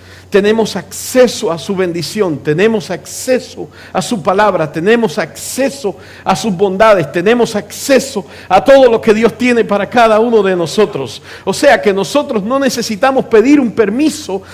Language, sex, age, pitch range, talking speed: English, male, 50-69, 195-255 Hz, 155 wpm